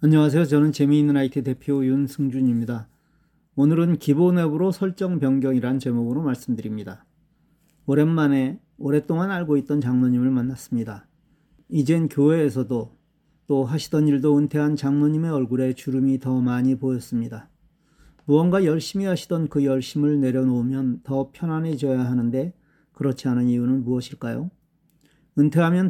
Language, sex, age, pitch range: Korean, male, 40-59, 130-160 Hz